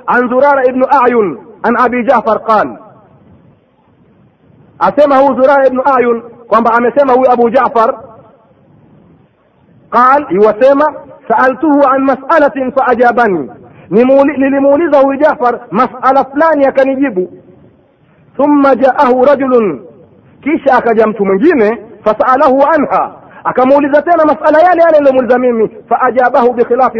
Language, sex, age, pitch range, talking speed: Swahili, male, 40-59, 225-290 Hz, 110 wpm